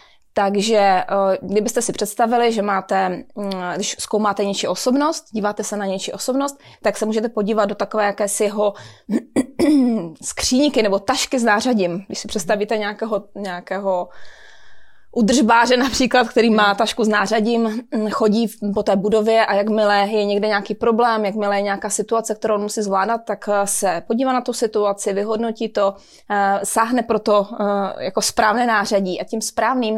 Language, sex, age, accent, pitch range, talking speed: Czech, female, 20-39, native, 200-230 Hz, 150 wpm